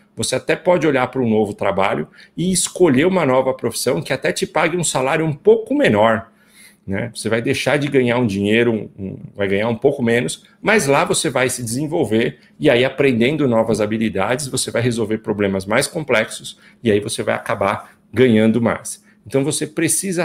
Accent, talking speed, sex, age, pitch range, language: Brazilian, 185 wpm, male, 40-59, 115-150 Hz, Portuguese